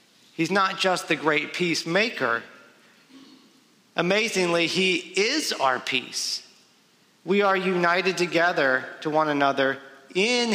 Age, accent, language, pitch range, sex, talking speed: 40-59, American, English, 150-195 Hz, male, 110 wpm